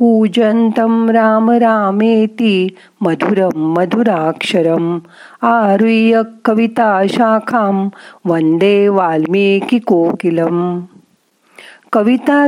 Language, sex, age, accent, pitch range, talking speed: Marathi, female, 40-59, native, 175-225 Hz, 50 wpm